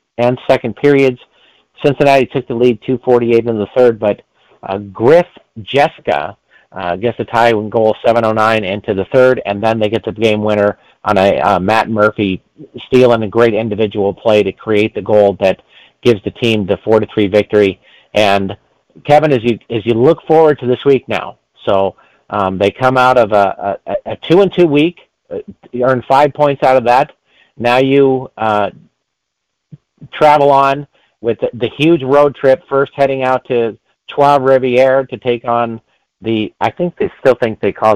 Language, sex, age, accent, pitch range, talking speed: English, male, 50-69, American, 105-135 Hz, 180 wpm